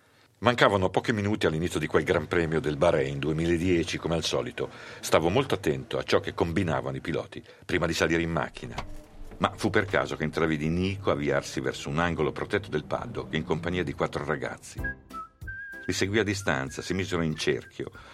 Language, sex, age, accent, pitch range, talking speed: Italian, male, 50-69, native, 75-100 Hz, 180 wpm